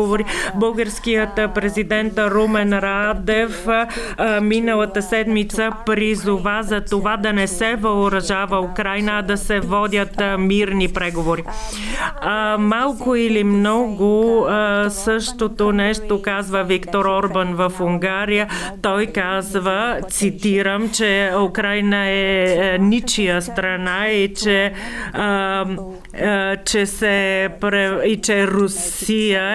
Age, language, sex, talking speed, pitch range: 40-59, Bulgarian, female, 90 wpm, 190-215 Hz